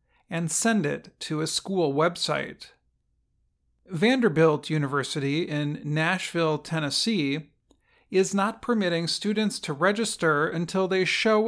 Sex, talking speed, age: male, 110 wpm, 40-59